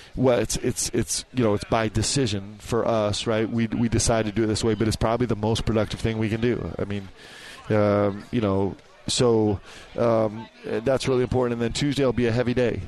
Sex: male